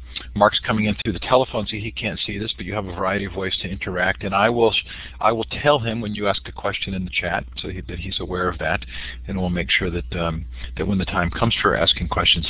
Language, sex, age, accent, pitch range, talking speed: English, male, 40-59, American, 80-100 Hz, 275 wpm